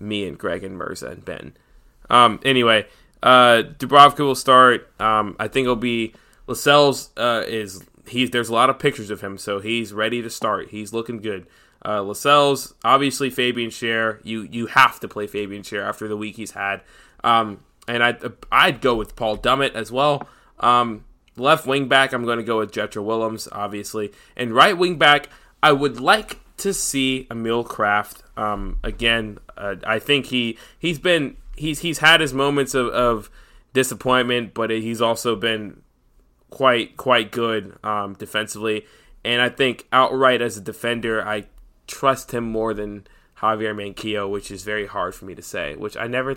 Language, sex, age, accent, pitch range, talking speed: English, male, 20-39, American, 105-130 Hz, 175 wpm